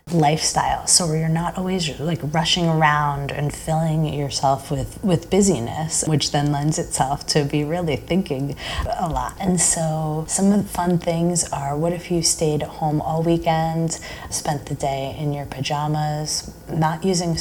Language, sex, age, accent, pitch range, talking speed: English, female, 20-39, American, 145-170 Hz, 170 wpm